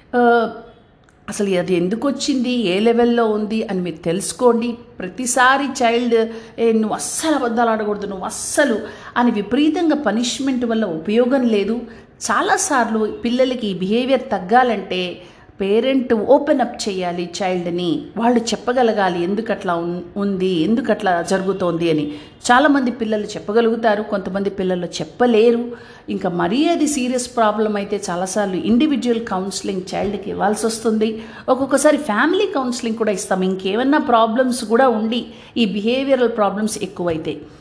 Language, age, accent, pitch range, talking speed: Telugu, 50-69, native, 200-250 Hz, 110 wpm